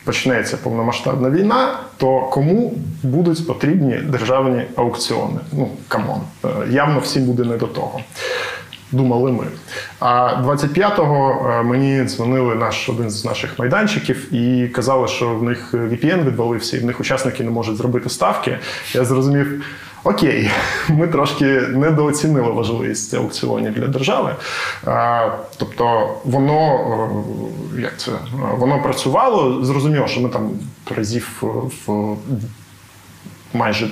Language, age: Ukrainian, 20-39